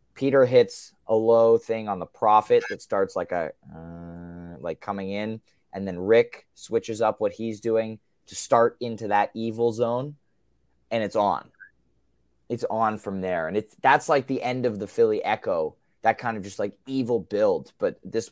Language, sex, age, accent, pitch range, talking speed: English, male, 20-39, American, 105-135 Hz, 185 wpm